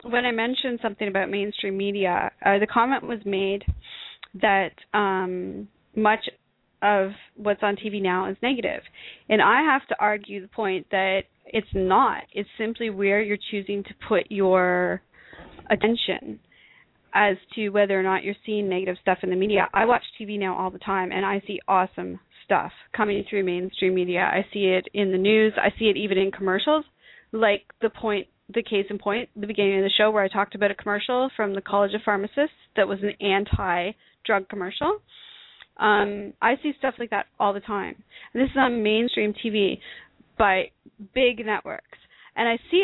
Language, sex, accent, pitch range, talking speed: English, female, American, 195-225 Hz, 180 wpm